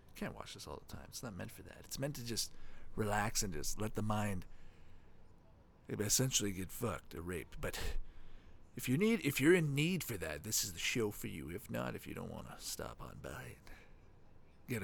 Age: 40-59